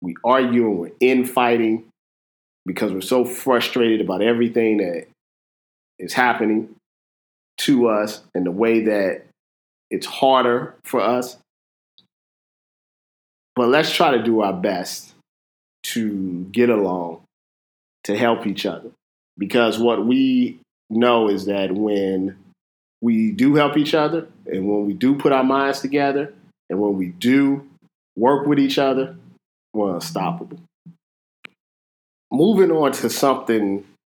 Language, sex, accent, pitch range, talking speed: English, male, American, 95-125 Hz, 125 wpm